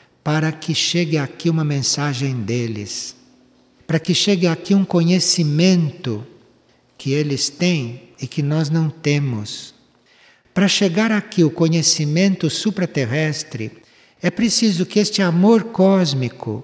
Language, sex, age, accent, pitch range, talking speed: Portuguese, male, 60-79, Brazilian, 150-200 Hz, 120 wpm